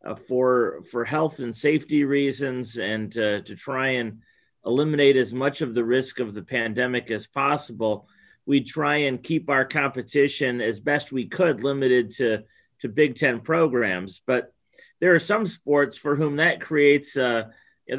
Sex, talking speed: male, 170 wpm